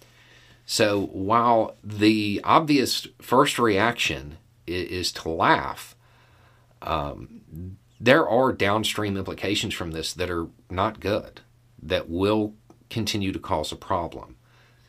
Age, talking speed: 40-59, 110 wpm